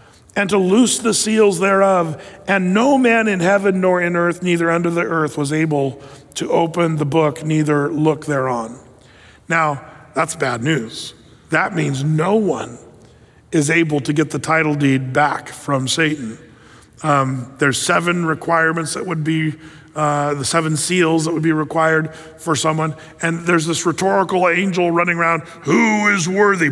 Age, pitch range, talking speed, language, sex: 40-59, 150-195 Hz, 160 wpm, English, male